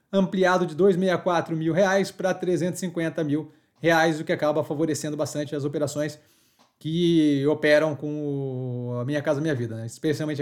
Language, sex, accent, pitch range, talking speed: Portuguese, male, Brazilian, 150-185 Hz, 150 wpm